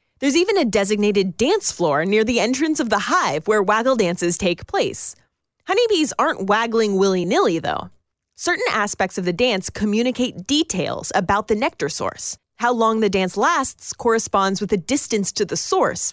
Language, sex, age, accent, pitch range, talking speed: English, female, 30-49, American, 200-270 Hz, 165 wpm